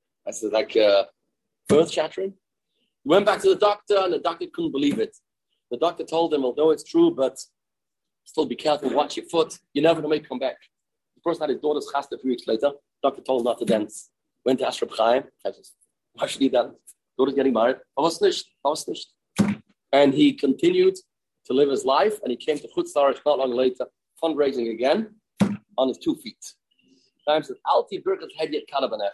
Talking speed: 180 wpm